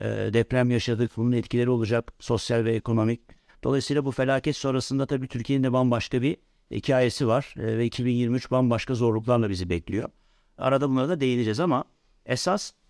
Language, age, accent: Turkish, 60-79, native